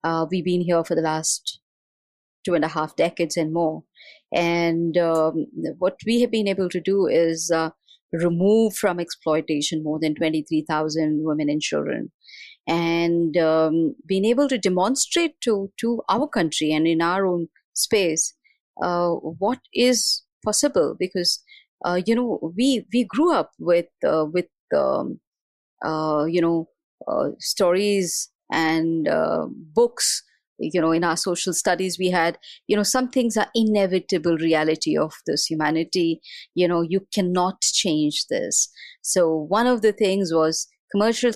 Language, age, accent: English, 30-49, Indian